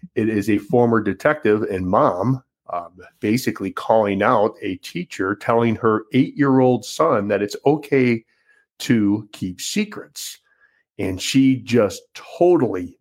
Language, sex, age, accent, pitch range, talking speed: English, male, 40-59, American, 100-120 Hz, 125 wpm